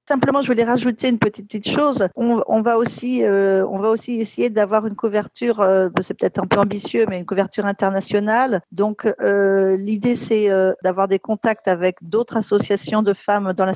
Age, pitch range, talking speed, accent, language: 40-59, 185-220 Hz, 195 wpm, French, French